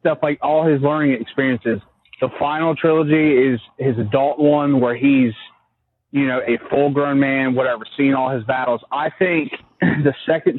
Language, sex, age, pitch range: English, male, 30-49, 130-150 Hz